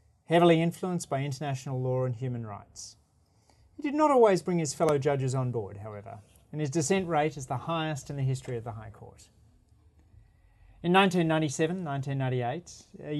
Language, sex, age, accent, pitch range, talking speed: English, male, 30-49, Australian, 115-155 Hz, 165 wpm